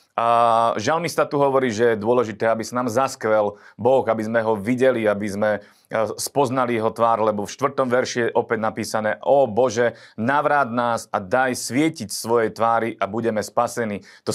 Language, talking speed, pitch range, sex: Slovak, 170 wpm, 110-130 Hz, male